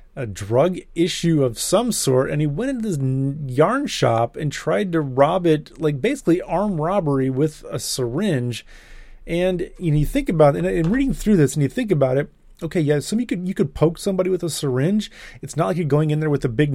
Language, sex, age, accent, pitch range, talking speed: English, male, 30-49, American, 135-180 Hz, 220 wpm